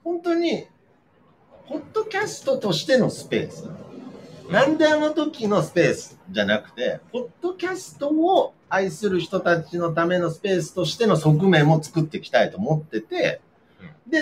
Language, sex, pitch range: Japanese, male, 145-205 Hz